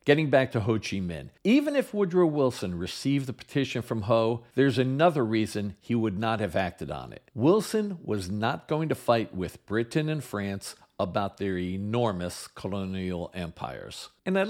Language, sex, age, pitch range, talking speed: English, male, 50-69, 100-140 Hz, 175 wpm